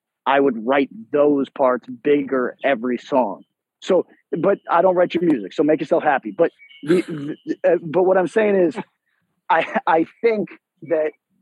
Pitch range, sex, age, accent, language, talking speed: 145-200 Hz, male, 30-49, American, English, 170 wpm